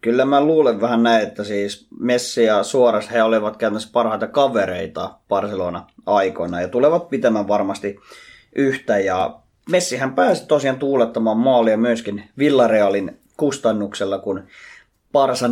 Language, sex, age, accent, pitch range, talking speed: Finnish, male, 20-39, native, 105-140 Hz, 130 wpm